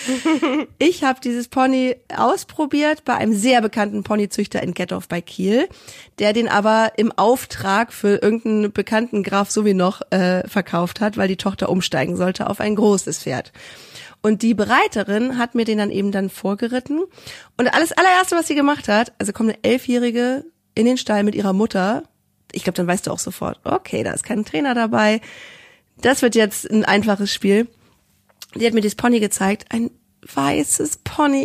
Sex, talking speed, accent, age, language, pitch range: female, 175 wpm, German, 30-49, German, 200-265 Hz